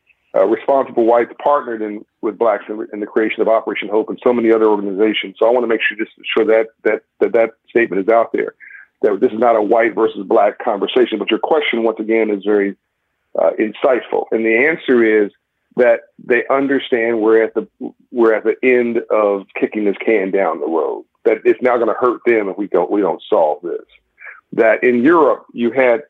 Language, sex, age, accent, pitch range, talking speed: English, male, 50-69, American, 110-165 Hz, 215 wpm